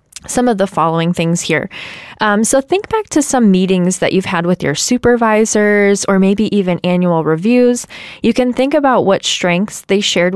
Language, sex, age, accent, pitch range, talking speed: English, female, 10-29, American, 175-225 Hz, 185 wpm